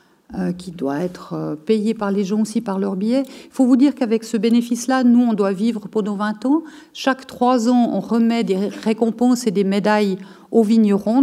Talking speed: 200 wpm